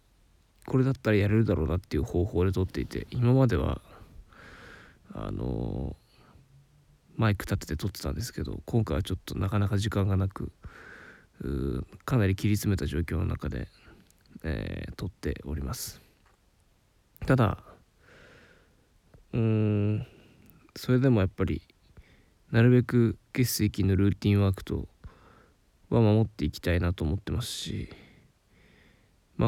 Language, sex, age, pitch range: Japanese, male, 20-39, 90-115 Hz